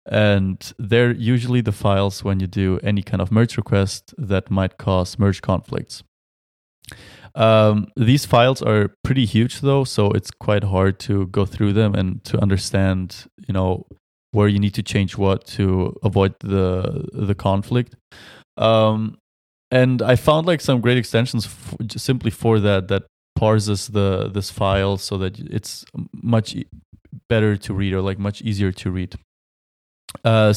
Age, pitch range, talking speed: 20-39, 95-115 Hz, 155 wpm